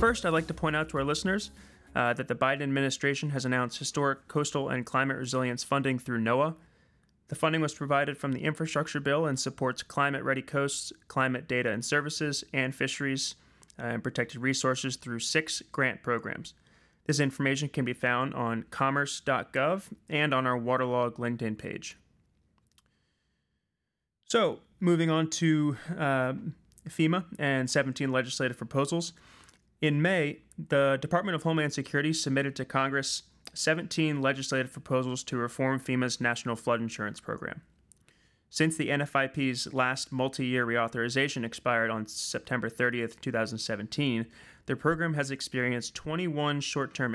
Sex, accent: male, American